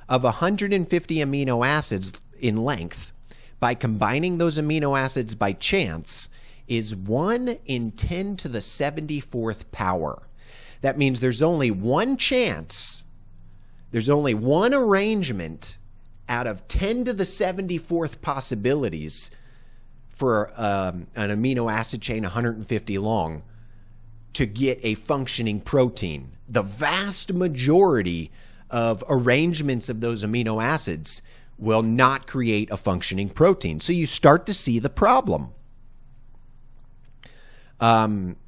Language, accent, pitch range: English, American, 105-135 Hz